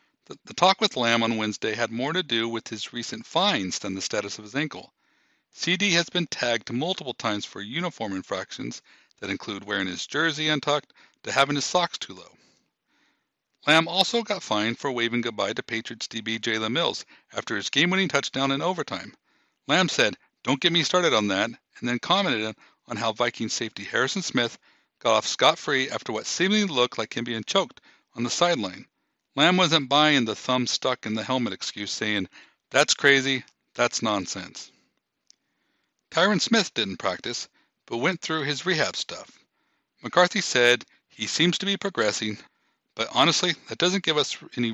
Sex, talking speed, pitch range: male, 175 wpm, 115-170 Hz